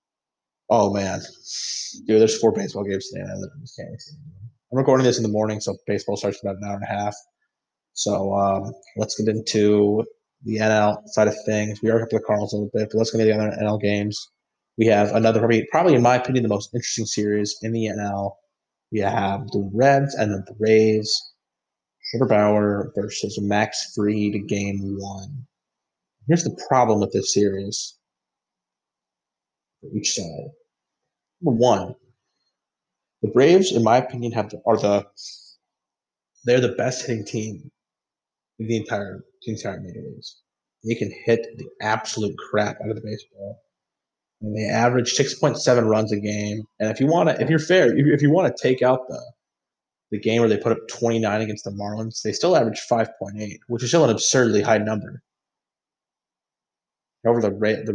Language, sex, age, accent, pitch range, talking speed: English, male, 20-39, American, 105-120 Hz, 175 wpm